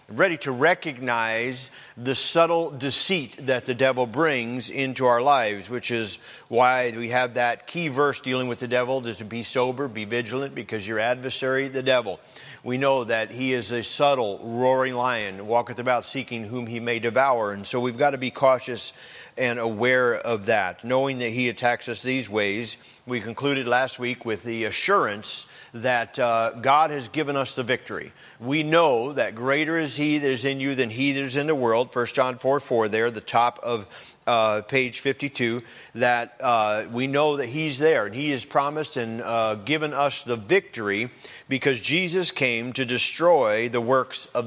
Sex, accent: male, American